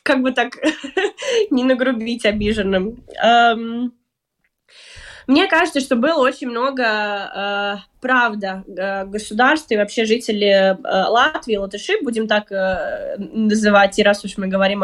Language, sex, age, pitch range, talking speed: Russian, female, 20-39, 210-255 Hz, 125 wpm